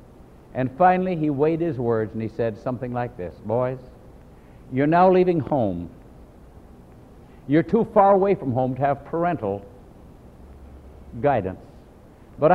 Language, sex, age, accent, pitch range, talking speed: English, male, 60-79, American, 115-180 Hz, 135 wpm